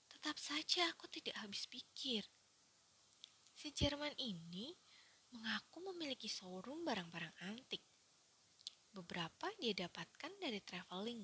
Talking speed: 100 wpm